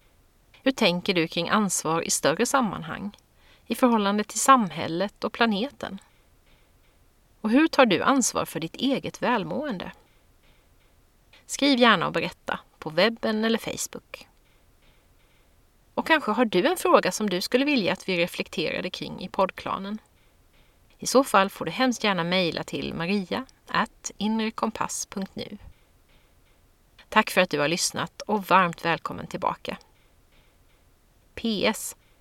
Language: Swedish